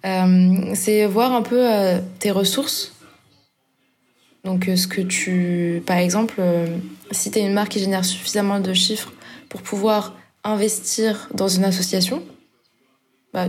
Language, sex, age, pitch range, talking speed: French, female, 20-39, 185-225 Hz, 145 wpm